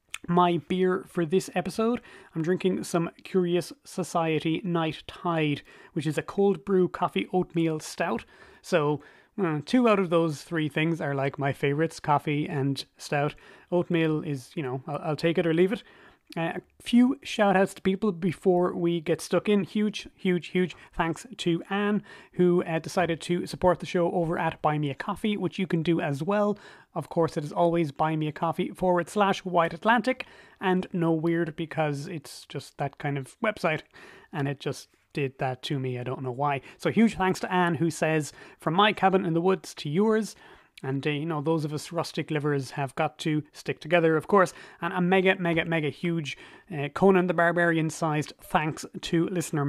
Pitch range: 155-180 Hz